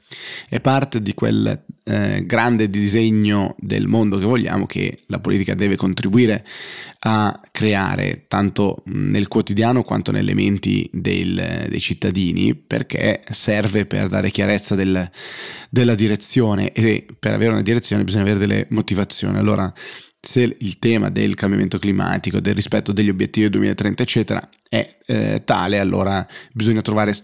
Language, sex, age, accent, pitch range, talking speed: Italian, male, 20-39, native, 100-115 Hz, 135 wpm